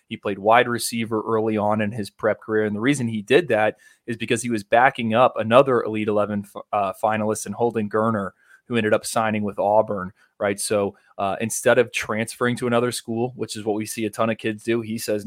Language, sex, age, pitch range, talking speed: English, male, 20-39, 105-115 Hz, 225 wpm